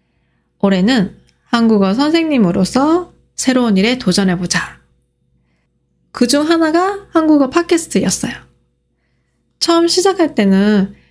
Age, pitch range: 20-39, 185-260 Hz